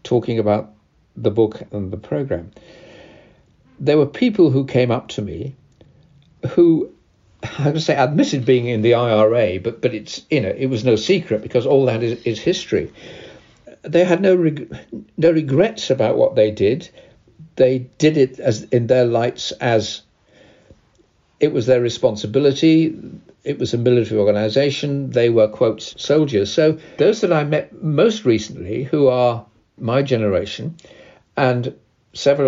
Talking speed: 155 wpm